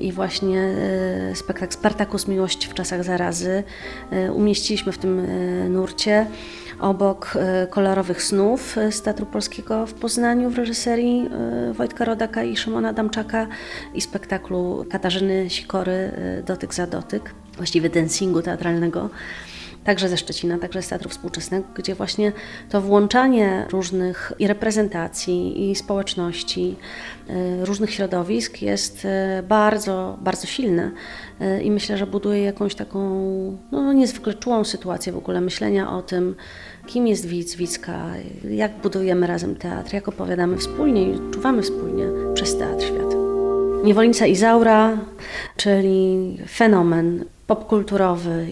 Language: Polish